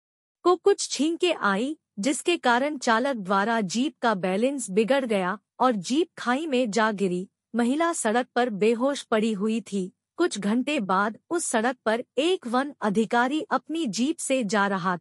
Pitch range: 215-275 Hz